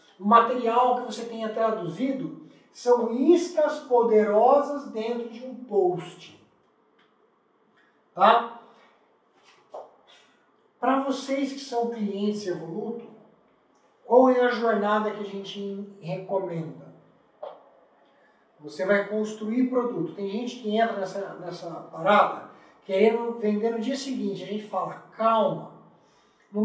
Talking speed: 110 wpm